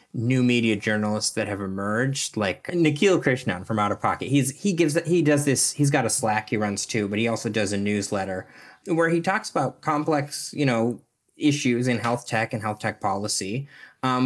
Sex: male